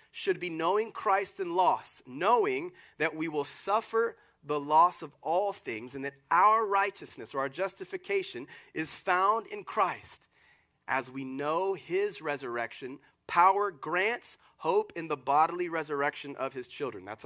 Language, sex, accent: English, male, American